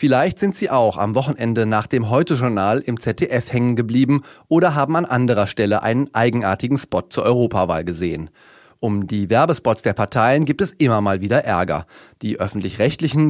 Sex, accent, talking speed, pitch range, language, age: male, German, 165 wpm, 110-145 Hz, German, 30-49